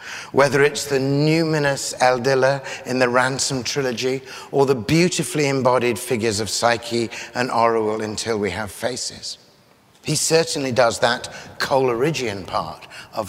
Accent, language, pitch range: British, English, 115-150 Hz